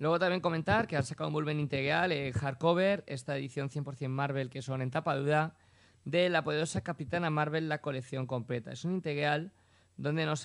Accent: Spanish